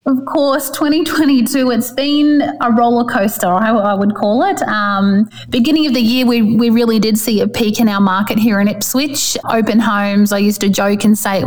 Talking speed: 215 wpm